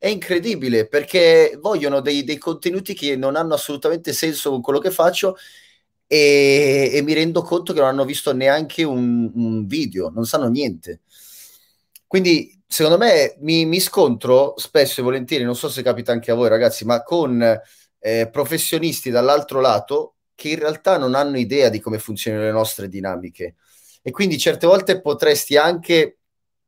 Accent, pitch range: native, 120-160 Hz